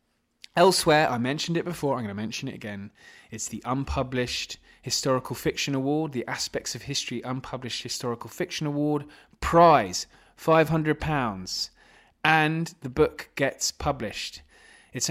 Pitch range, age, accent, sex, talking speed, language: 120-160 Hz, 20-39, British, male, 130 wpm, English